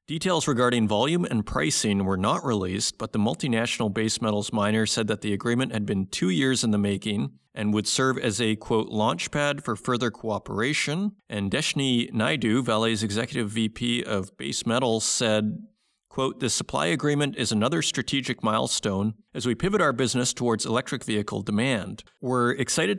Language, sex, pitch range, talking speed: English, male, 110-130 Hz, 170 wpm